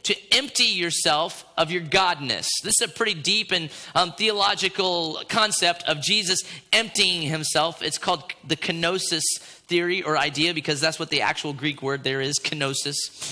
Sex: male